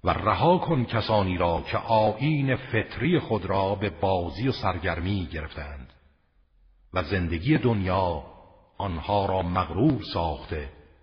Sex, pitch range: male, 80-100 Hz